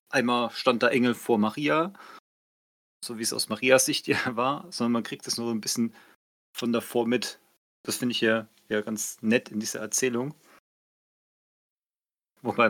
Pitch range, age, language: 110-130 Hz, 30-49, German